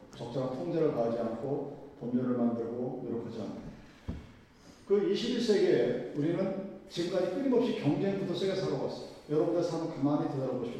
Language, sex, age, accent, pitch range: Korean, male, 40-59, native, 135-205 Hz